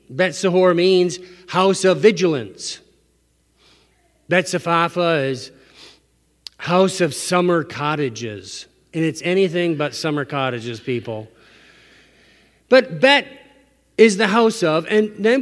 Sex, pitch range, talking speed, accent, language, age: male, 150-230 Hz, 100 wpm, American, English, 40-59